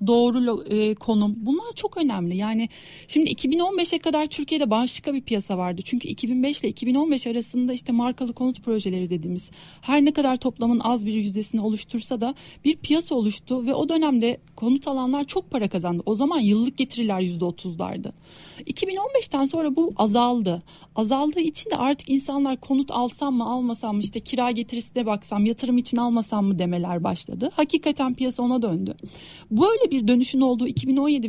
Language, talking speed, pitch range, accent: Turkish, 160 wpm, 205-275 Hz, native